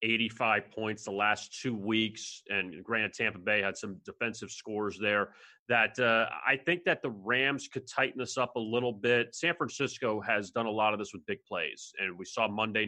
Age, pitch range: 30-49, 110-130 Hz